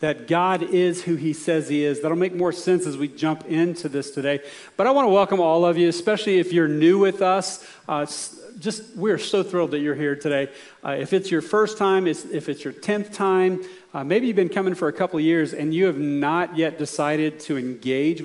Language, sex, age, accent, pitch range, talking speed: English, male, 40-59, American, 145-180 Hz, 235 wpm